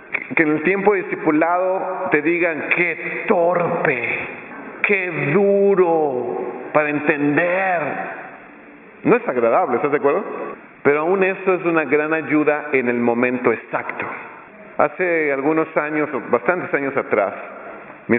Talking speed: 125 wpm